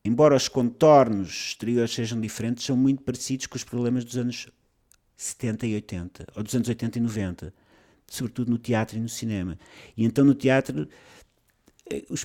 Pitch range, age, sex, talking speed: 115-145 Hz, 50-69, male, 165 wpm